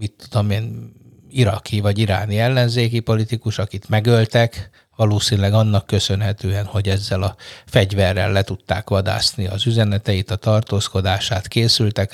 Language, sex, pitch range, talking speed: Hungarian, male, 100-120 Hz, 120 wpm